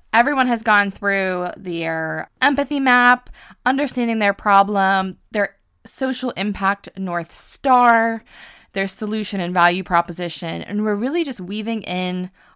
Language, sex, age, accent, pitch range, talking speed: English, female, 20-39, American, 180-240 Hz, 125 wpm